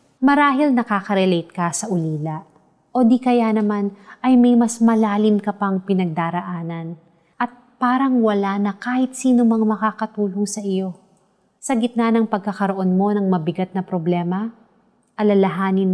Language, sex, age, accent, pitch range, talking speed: Filipino, female, 30-49, native, 180-230 Hz, 130 wpm